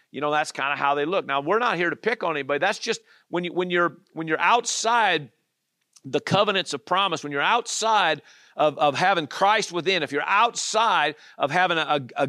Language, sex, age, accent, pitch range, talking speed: English, male, 50-69, American, 145-195 Hz, 215 wpm